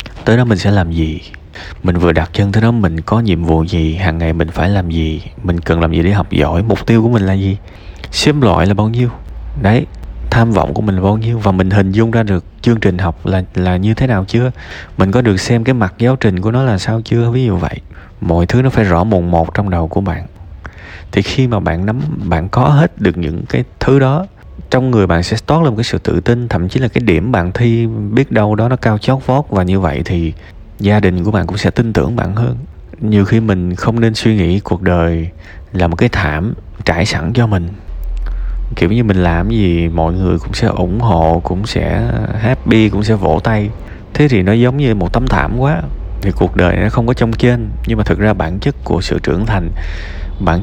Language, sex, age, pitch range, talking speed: Vietnamese, male, 20-39, 85-115 Hz, 245 wpm